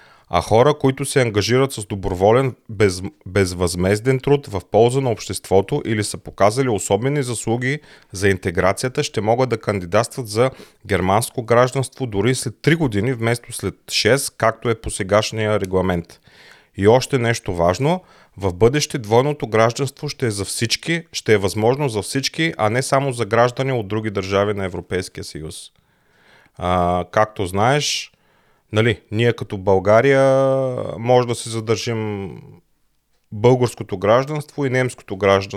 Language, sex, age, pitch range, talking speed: Bulgarian, male, 30-49, 100-130 Hz, 140 wpm